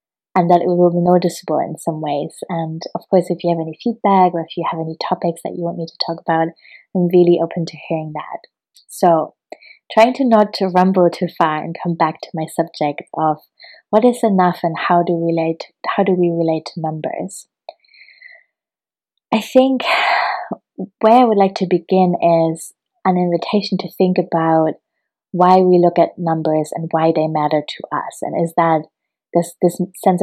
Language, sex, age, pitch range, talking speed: English, female, 20-39, 160-180 Hz, 190 wpm